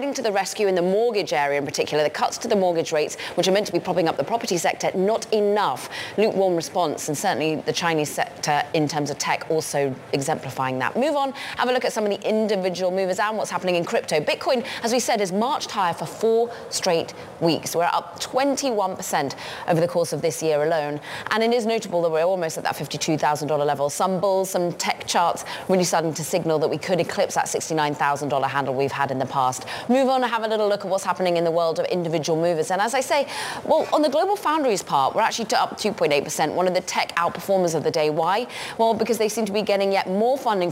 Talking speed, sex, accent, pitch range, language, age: 235 wpm, female, British, 155-210 Hz, English, 30-49